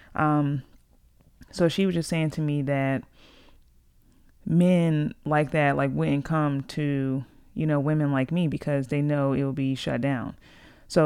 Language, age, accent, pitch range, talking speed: English, 30-49, American, 130-145 Hz, 165 wpm